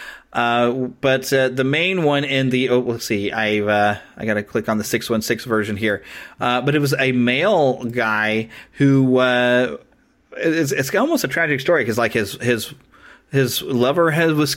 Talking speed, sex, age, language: 180 wpm, male, 30-49, English